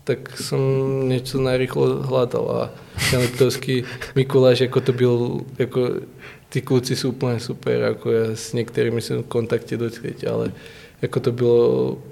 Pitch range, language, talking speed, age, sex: 115-125 Hz, Czech, 155 wpm, 20-39, male